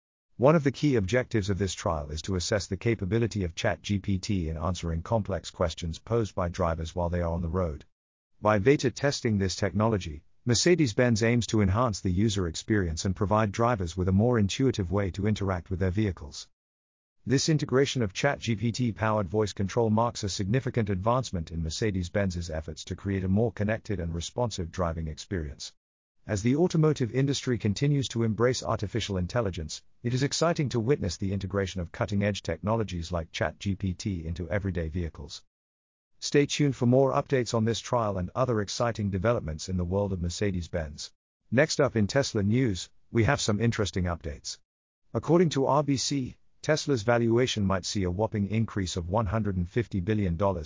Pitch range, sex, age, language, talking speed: 90-120 Hz, male, 50-69, English, 165 wpm